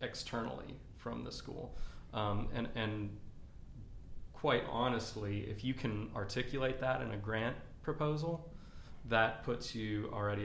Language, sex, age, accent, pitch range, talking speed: English, male, 30-49, American, 105-115 Hz, 125 wpm